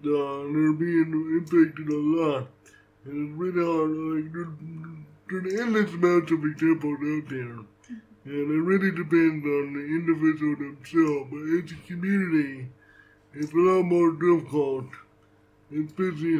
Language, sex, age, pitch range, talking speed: English, male, 60-79, 150-170 Hz, 135 wpm